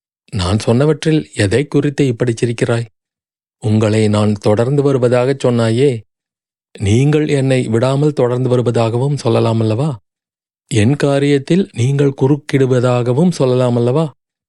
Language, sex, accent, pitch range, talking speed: Tamil, male, native, 115-140 Hz, 90 wpm